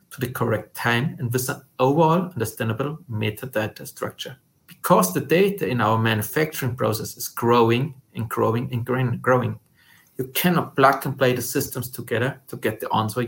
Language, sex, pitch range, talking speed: English, male, 120-155 Hz, 170 wpm